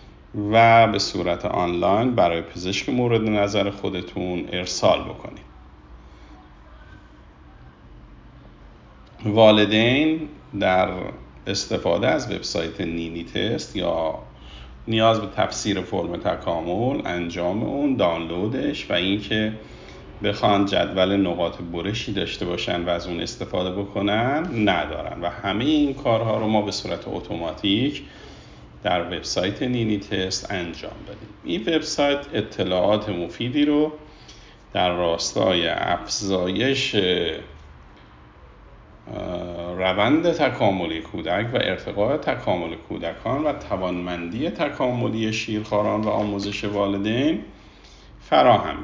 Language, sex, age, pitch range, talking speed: Persian, male, 50-69, 85-110 Hz, 95 wpm